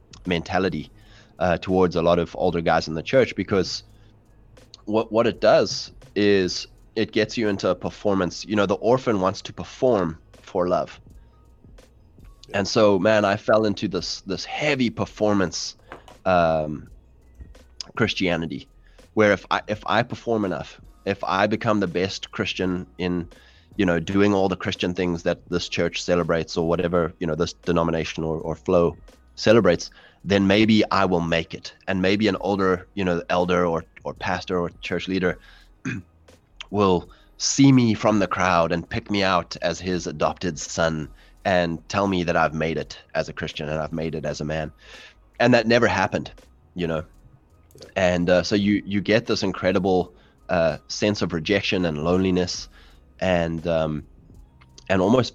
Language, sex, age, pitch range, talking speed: English, male, 20-39, 85-100 Hz, 165 wpm